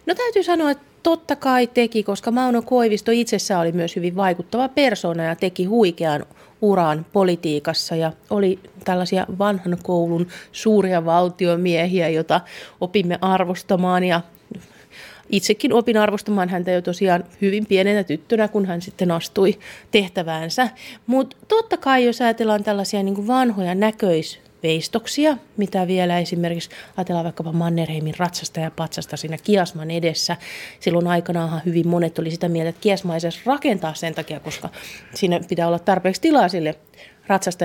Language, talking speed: Finnish, 140 wpm